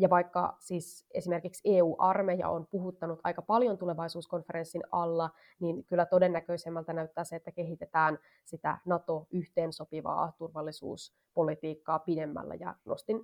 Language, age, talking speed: Finnish, 20-39, 110 wpm